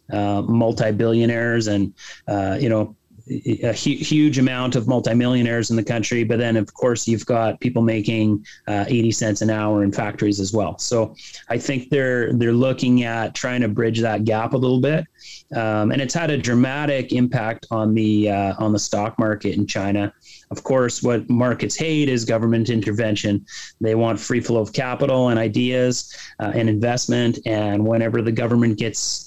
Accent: American